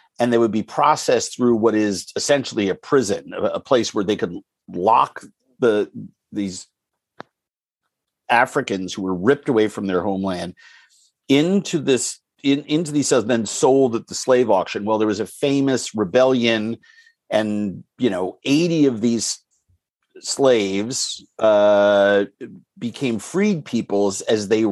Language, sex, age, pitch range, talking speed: English, male, 50-69, 105-135 Hz, 145 wpm